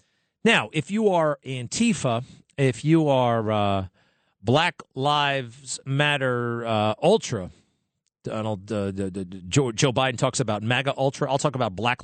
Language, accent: English, American